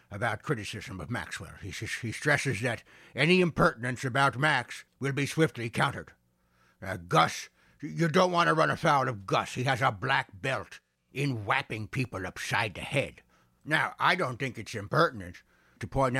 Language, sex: English, male